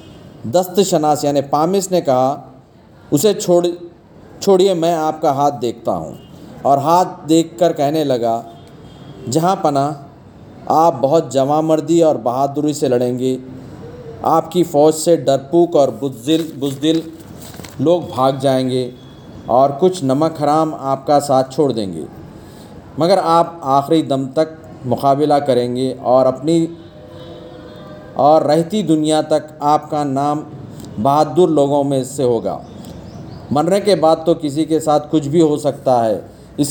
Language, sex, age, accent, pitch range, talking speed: Telugu, male, 40-59, native, 140-165 Hz, 50 wpm